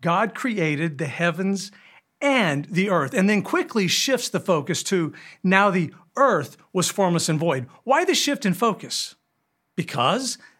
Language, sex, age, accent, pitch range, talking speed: English, male, 40-59, American, 170-235 Hz, 155 wpm